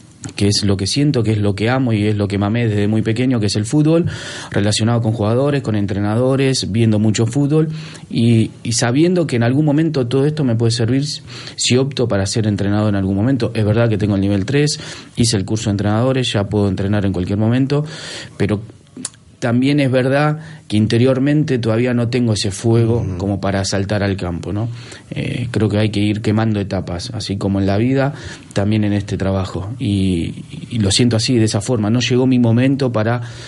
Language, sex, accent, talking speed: Spanish, male, Argentinian, 205 wpm